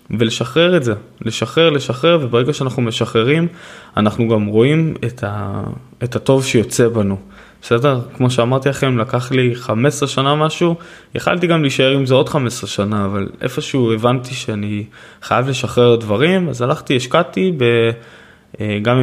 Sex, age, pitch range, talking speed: male, 20-39, 110-140 Hz, 145 wpm